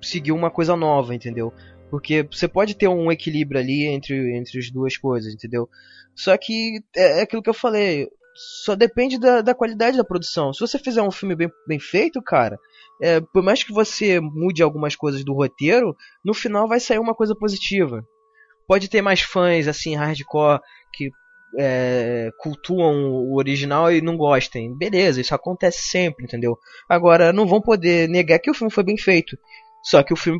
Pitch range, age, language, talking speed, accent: 140-195 Hz, 20-39, Portuguese, 180 wpm, Brazilian